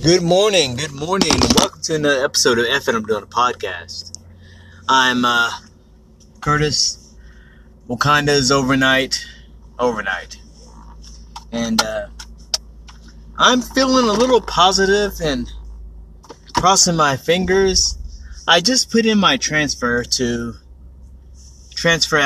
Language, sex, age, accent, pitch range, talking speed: English, male, 30-49, American, 85-135 Hz, 110 wpm